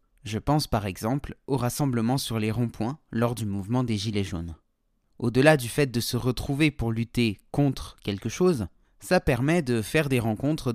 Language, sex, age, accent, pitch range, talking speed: French, male, 30-49, French, 110-150 Hz, 180 wpm